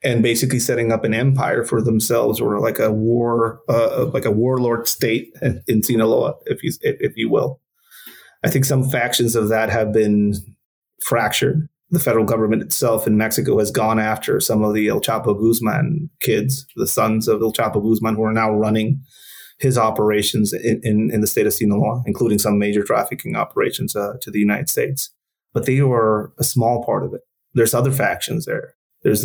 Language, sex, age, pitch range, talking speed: English, male, 30-49, 110-125 Hz, 185 wpm